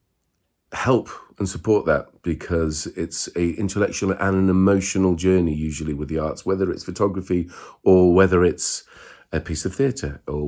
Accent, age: British, 40-59